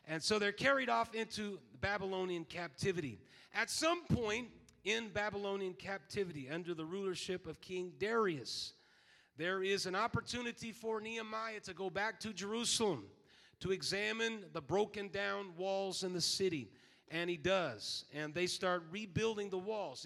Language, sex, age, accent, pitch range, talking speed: English, male, 40-59, American, 180-210 Hz, 145 wpm